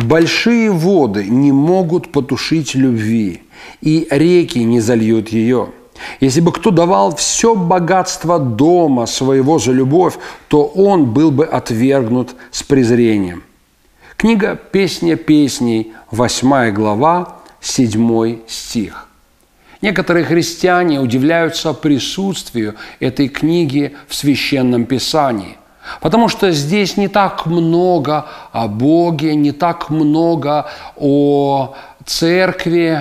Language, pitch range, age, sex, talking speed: Russian, 125-180 Hz, 40-59, male, 105 wpm